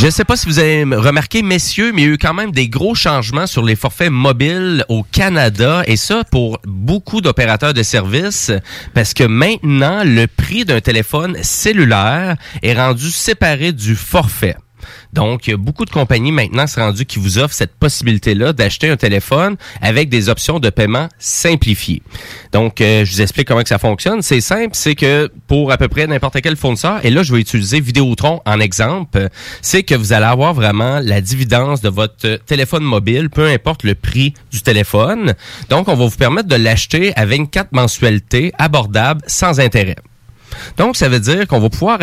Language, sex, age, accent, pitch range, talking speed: French, male, 30-49, Canadian, 115-150 Hz, 195 wpm